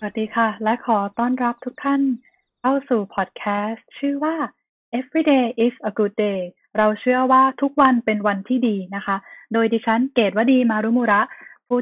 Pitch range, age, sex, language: 210-255 Hz, 20-39, female, Thai